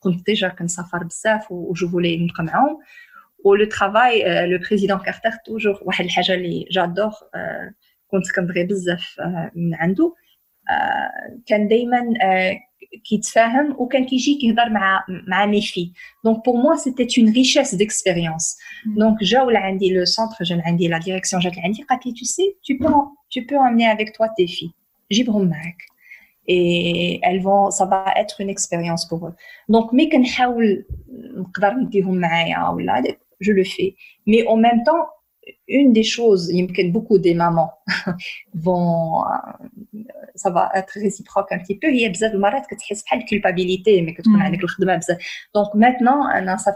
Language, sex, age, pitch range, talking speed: Arabic, female, 30-49, 185-245 Hz, 185 wpm